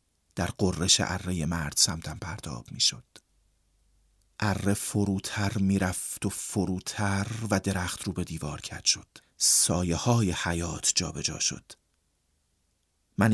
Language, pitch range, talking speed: Persian, 85-120 Hz, 110 wpm